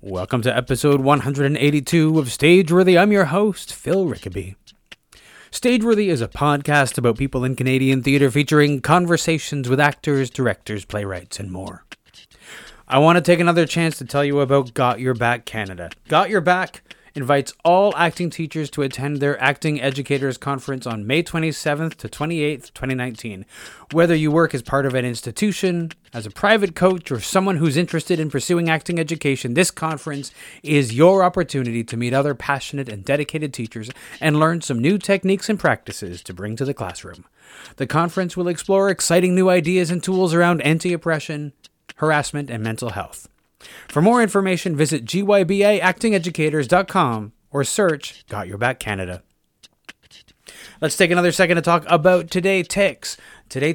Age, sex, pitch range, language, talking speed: 30-49, male, 130-175 Hz, English, 155 wpm